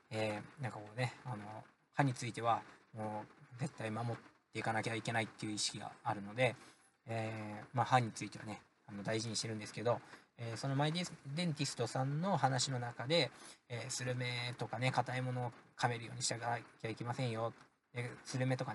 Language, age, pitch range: Japanese, 20-39, 115-145 Hz